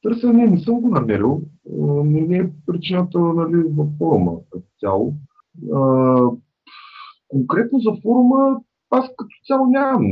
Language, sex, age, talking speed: Bulgarian, male, 30-49, 125 wpm